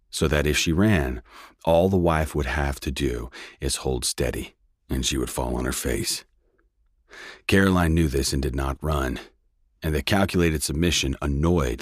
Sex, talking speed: male, 175 wpm